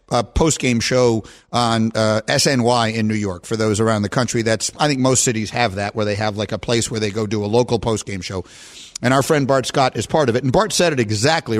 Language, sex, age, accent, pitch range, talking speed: English, male, 50-69, American, 115-185 Hz, 255 wpm